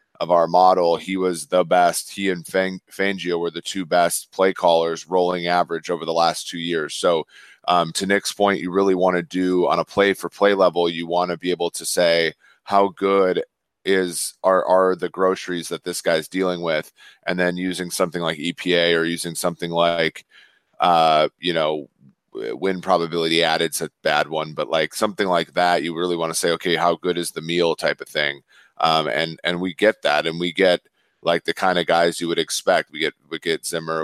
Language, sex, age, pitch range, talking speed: English, male, 30-49, 85-95 Hz, 210 wpm